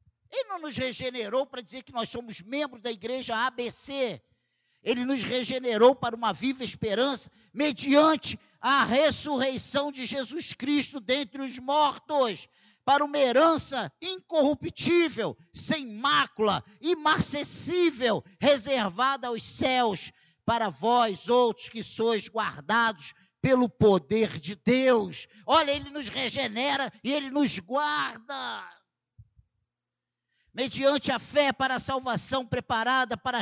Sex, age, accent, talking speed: male, 50-69, Brazilian, 115 wpm